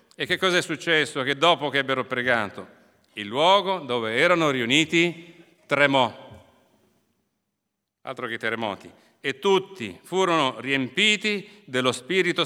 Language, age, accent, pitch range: Italian, 40-59, native, 145-190 Hz